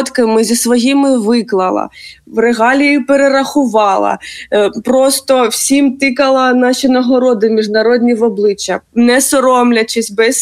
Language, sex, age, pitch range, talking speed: Ukrainian, female, 20-39, 215-255 Hz, 100 wpm